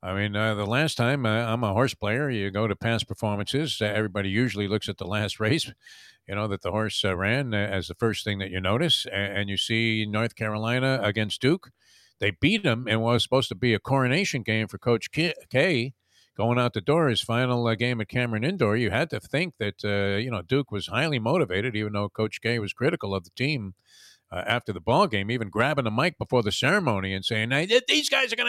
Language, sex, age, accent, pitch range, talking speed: English, male, 50-69, American, 105-135 Hz, 235 wpm